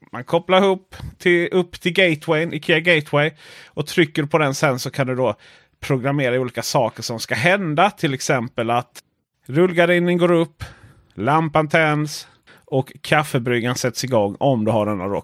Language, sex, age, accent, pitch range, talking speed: Swedish, male, 30-49, native, 125-165 Hz, 160 wpm